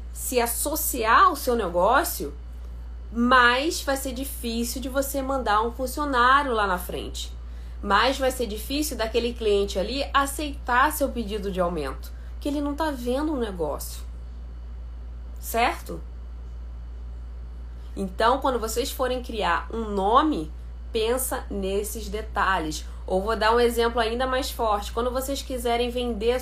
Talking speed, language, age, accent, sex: 135 wpm, Portuguese, 20-39, Brazilian, female